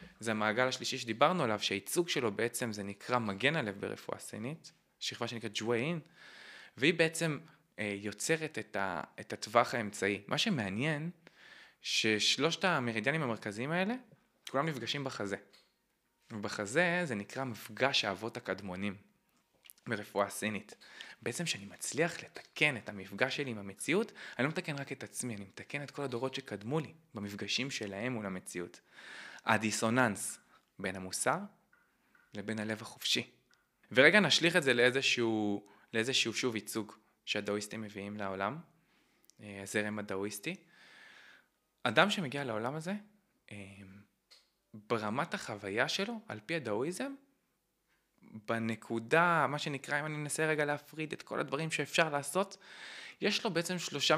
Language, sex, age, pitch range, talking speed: Hebrew, male, 20-39, 105-155 Hz, 125 wpm